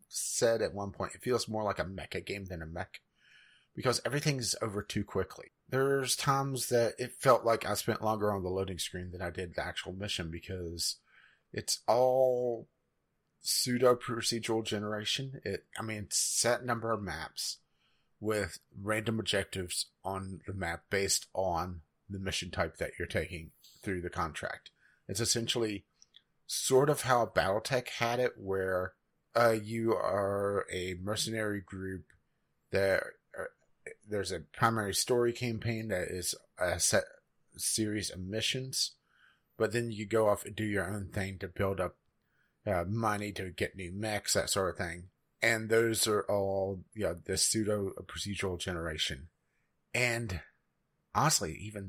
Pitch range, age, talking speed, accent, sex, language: 95-115 Hz, 30-49, 155 wpm, American, male, English